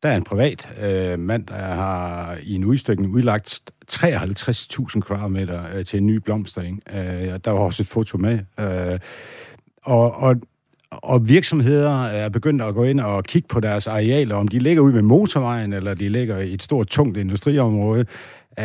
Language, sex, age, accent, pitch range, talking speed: Danish, male, 60-79, native, 100-135 Hz, 175 wpm